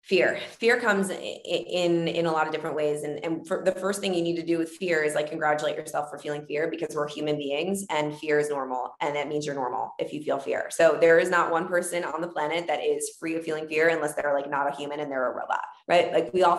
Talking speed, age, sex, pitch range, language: 275 wpm, 20-39, female, 155-200 Hz, English